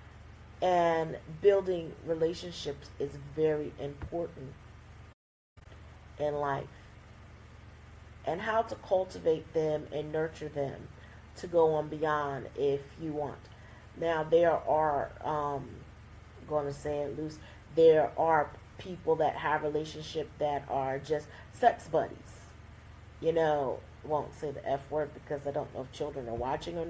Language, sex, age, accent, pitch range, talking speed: English, female, 40-59, American, 110-165 Hz, 135 wpm